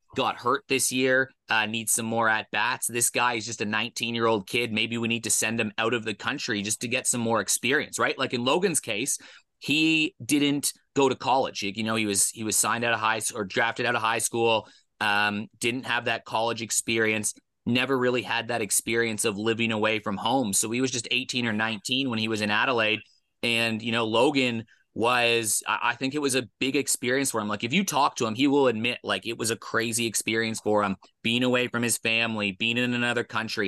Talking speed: 230 wpm